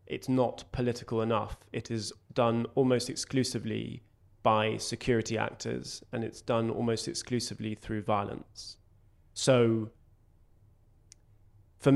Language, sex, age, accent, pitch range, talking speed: English, male, 20-39, British, 105-125 Hz, 105 wpm